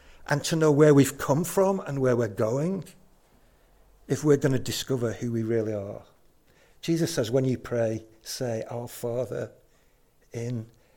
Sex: male